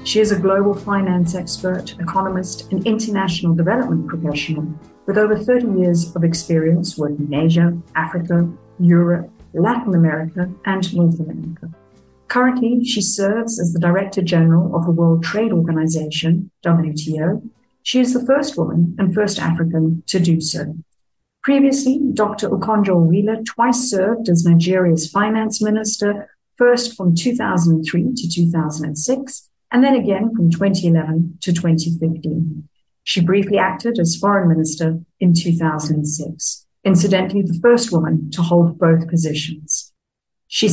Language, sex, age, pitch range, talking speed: English, female, 50-69, 165-205 Hz, 130 wpm